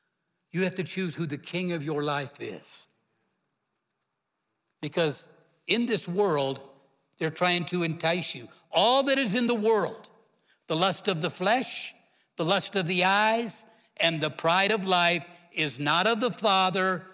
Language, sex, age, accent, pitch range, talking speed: English, male, 60-79, American, 160-205 Hz, 160 wpm